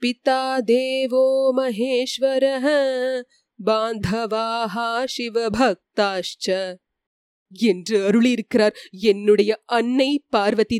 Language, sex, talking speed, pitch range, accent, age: Tamil, female, 55 wpm, 210-255 Hz, native, 30-49